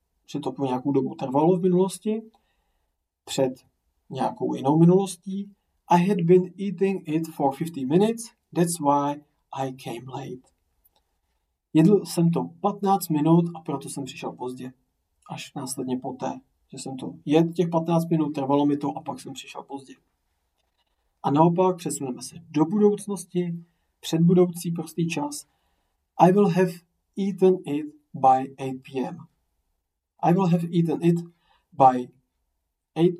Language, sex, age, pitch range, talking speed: English, male, 40-59, 130-175 Hz, 140 wpm